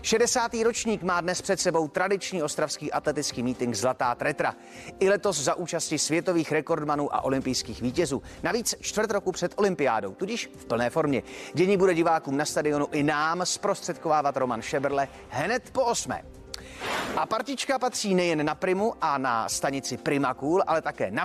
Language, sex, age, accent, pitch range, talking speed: Czech, male, 30-49, native, 125-185 Hz, 160 wpm